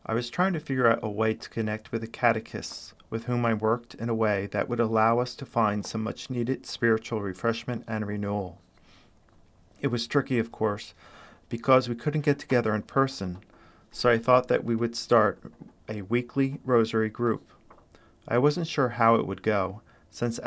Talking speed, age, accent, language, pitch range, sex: 190 wpm, 40-59, American, English, 105-120 Hz, male